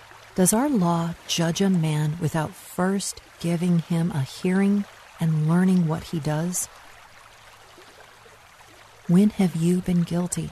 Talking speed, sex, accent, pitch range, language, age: 125 wpm, female, American, 155-185 Hz, English, 50-69